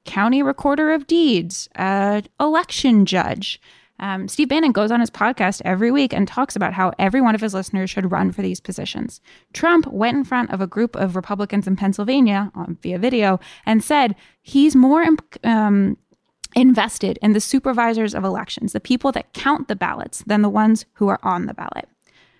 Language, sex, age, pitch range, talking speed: English, female, 10-29, 195-255 Hz, 180 wpm